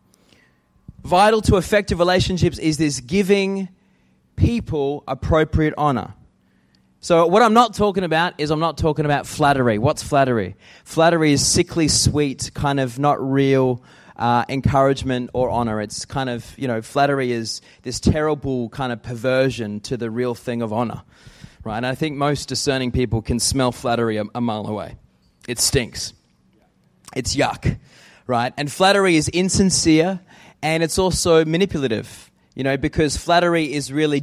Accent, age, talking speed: Australian, 20-39, 150 wpm